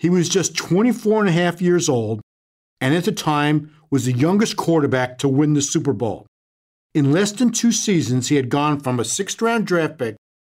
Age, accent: 50-69, American